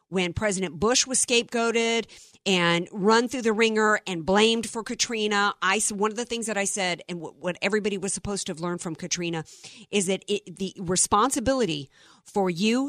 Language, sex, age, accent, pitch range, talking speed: English, female, 50-69, American, 185-230 Hz, 175 wpm